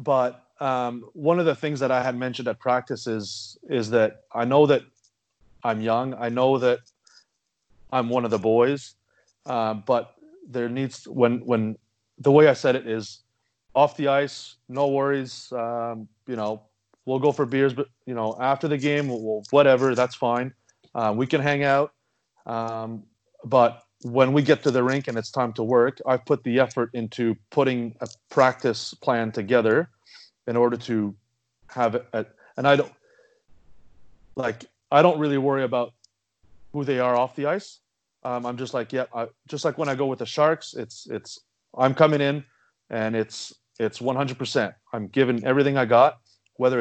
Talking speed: 180 wpm